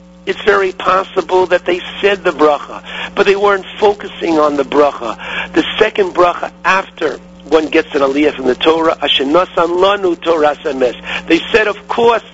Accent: American